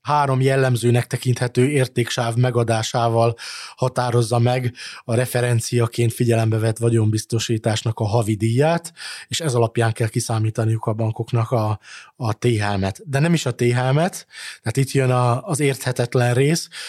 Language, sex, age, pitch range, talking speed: Hungarian, male, 20-39, 115-135 Hz, 130 wpm